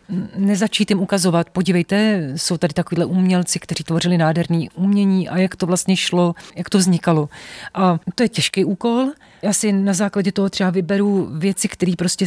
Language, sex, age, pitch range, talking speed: Slovak, female, 40-59, 170-190 Hz, 170 wpm